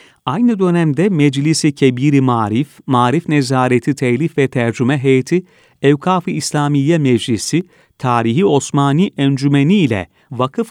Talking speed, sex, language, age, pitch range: 110 wpm, male, Turkish, 40-59, 120-160 Hz